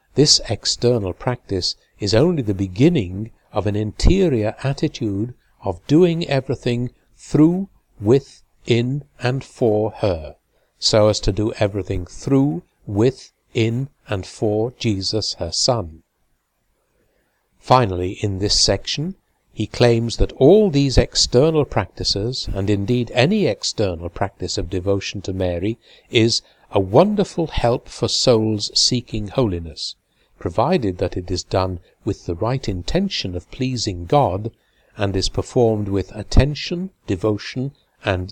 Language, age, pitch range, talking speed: English, 60-79, 95-125 Hz, 125 wpm